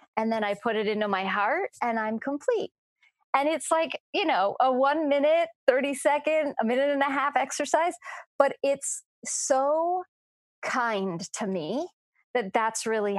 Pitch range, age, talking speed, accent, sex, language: 210-280 Hz, 30-49, 165 wpm, American, female, English